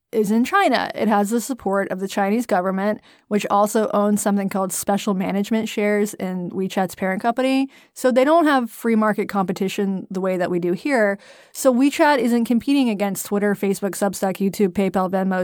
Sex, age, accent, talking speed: female, 20-39, American, 185 wpm